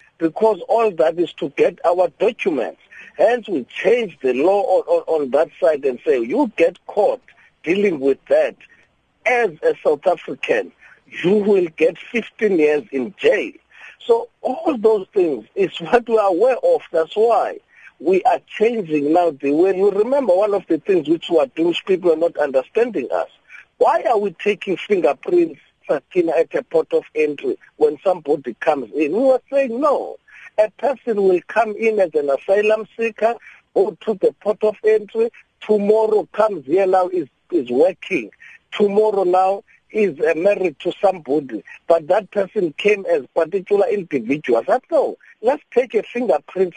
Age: 50-69